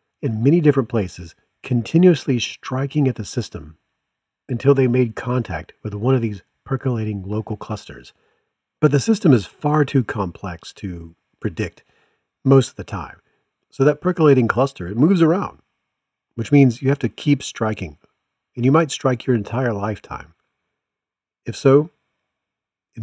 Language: English